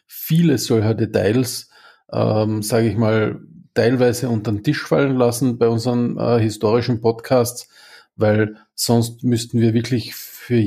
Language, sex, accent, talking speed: German, male, Austrian, 135 wpm